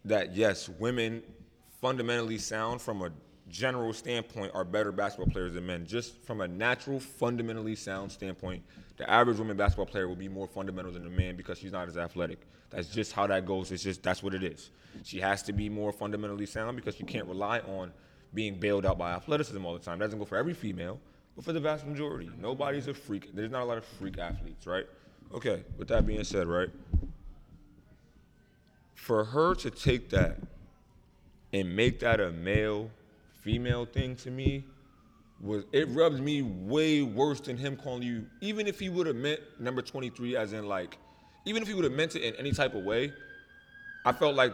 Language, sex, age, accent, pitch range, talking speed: English, male, 20-39, American, 95-135 Hz, 200 wpm